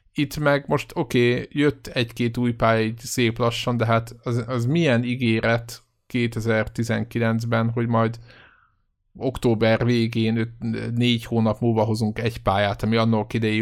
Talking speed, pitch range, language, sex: 140 wpm, 110-120 Hz, Hungarian, male